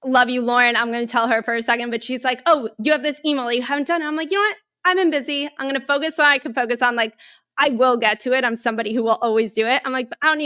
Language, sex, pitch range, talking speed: English, female, 200-235 Hz, 325 wpm